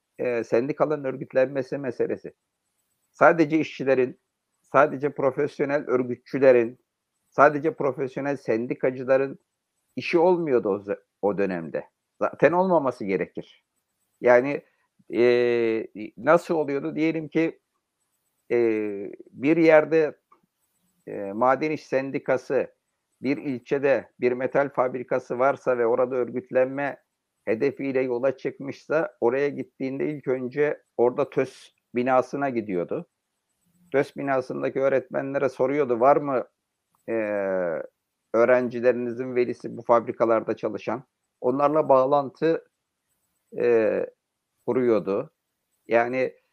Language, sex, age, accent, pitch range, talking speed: Turkish, male, 60-79, native, 125-155 Hz, 90 wpm